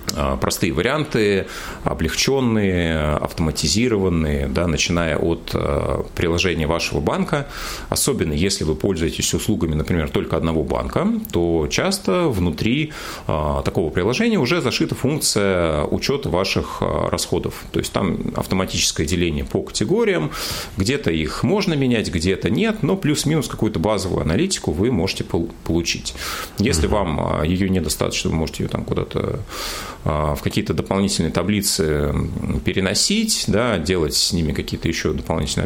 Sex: male